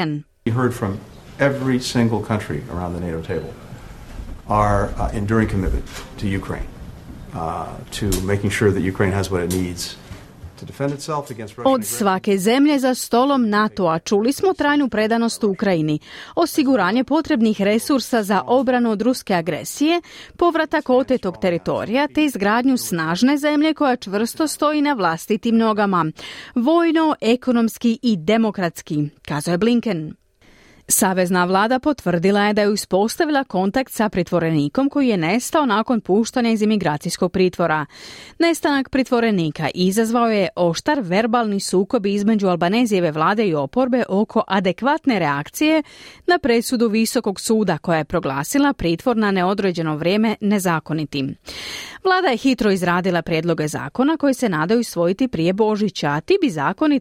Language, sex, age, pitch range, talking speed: Croatian, female, 40-59, 165-255 Hz, 135 wpm